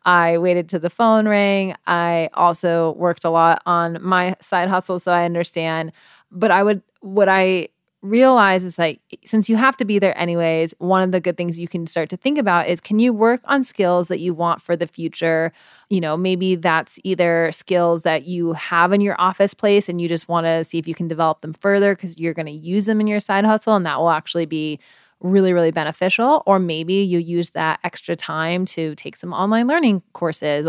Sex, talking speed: female, 220 wpm